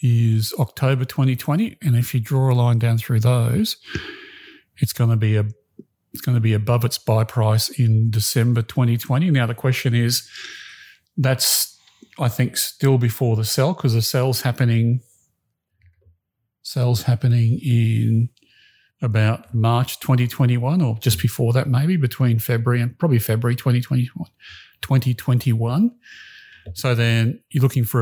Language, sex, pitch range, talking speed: English, male, 115-130 Hz, 135 wpm